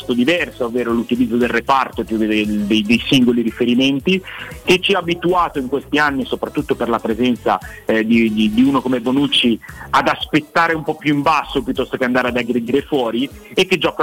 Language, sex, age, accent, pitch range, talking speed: Italian, male, 30-49, native, 120-150 Hz, 190 wpm